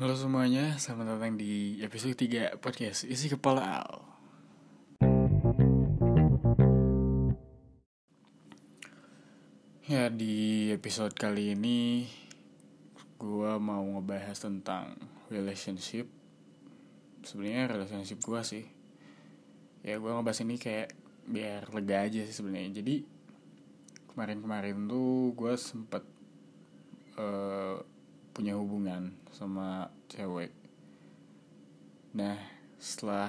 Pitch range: 70-110 Hz